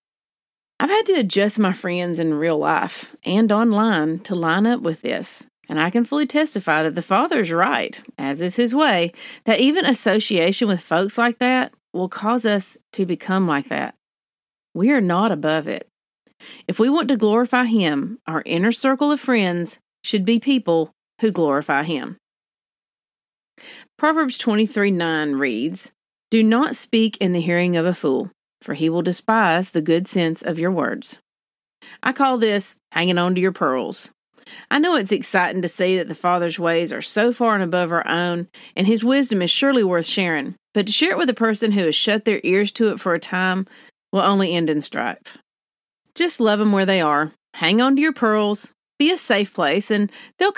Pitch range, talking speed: 170-235 Hz, 190 wpm